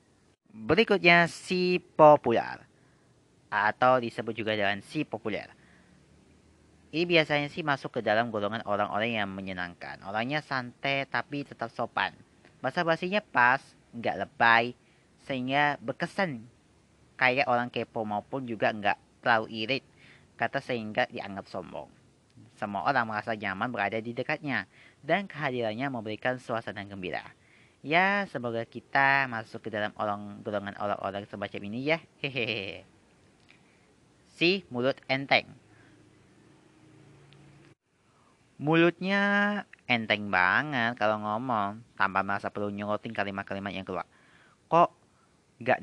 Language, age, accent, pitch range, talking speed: Indonesian, 30-49, native, 105-140 Hz, 110 wpm